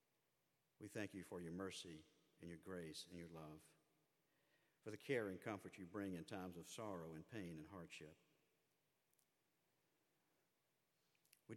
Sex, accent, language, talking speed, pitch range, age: male, American, English, 145 wpm, 90-100 Hz, 50-69